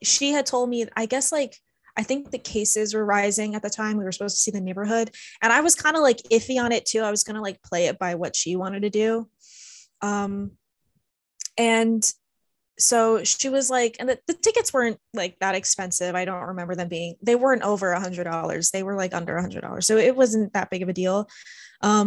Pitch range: 185-235 Hz